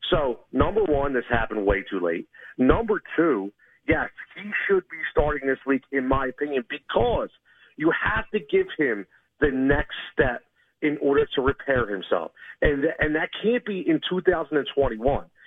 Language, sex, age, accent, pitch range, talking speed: English, male, 50-69, American, 140-225 Hz, 160 wpm